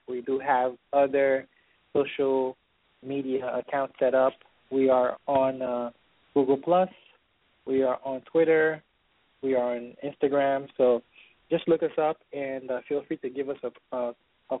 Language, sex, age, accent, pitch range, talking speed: English, male, 20-39, American, 125-145 Hz, 155 wpm